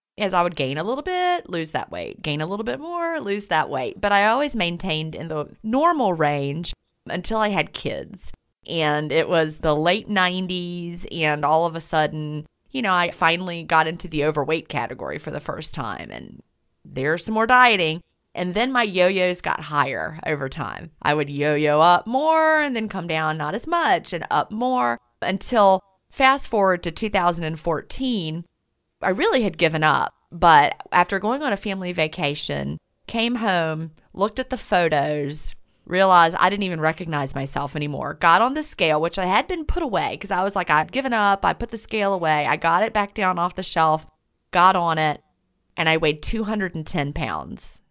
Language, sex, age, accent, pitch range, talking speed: English, female, 30-49, American, 155-200 Hz, 190 wpm